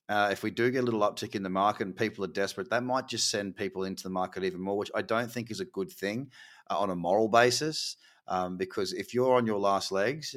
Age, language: 30-49, English